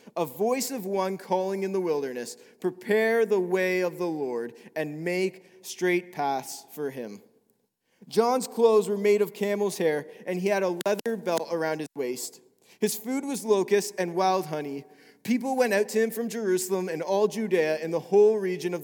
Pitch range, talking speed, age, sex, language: 180-225 Hz, 185 wpm, 30-49, male, English